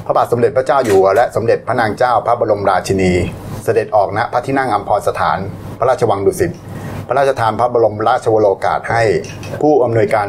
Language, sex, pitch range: Thai, male, 105-125 Hz